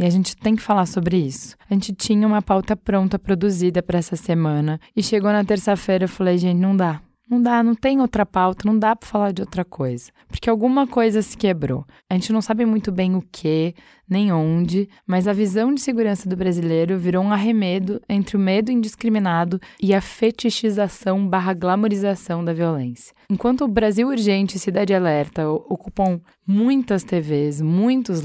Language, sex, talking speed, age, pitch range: Portuguese, female, 185 wpm, 10-29, 175-210 Hz